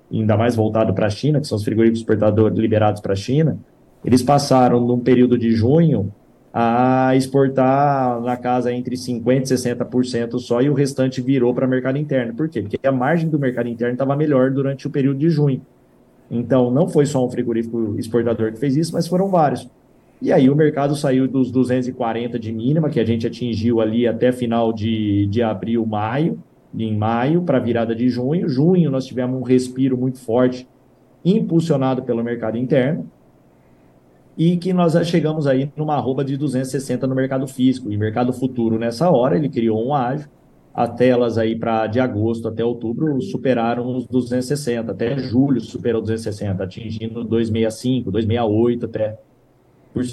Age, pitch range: 20-39, 115-135 Hz